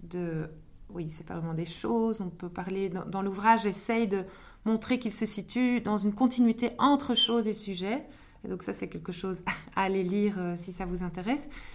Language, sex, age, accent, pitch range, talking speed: French, female, 20-39, French, 185-240 Hz, 205 wpm